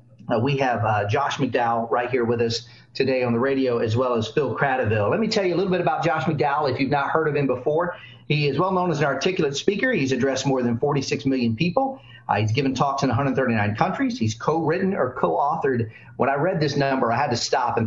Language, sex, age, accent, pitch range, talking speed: English, male, 40-59, American, 115-150 Hz, 240 wpm